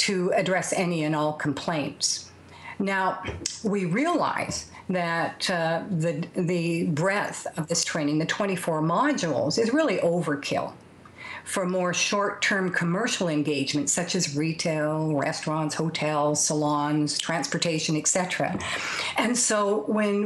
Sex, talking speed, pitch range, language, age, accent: female, 115 wpm, 165-200 Hz, English, 50-69, American